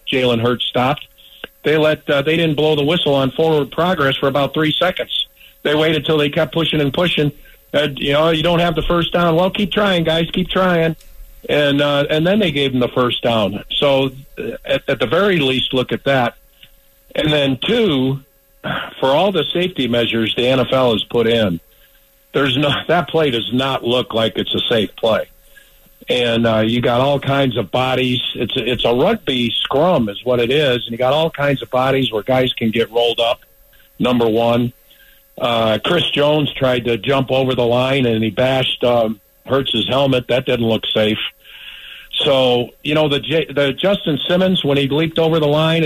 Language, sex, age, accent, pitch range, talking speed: English, male, 50-69, American, 125-155 Hz, 200 wpm